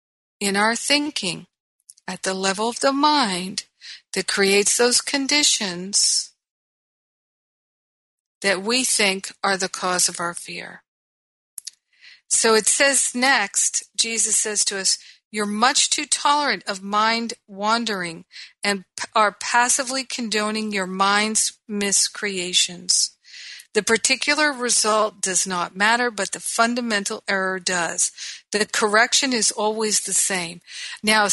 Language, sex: English, female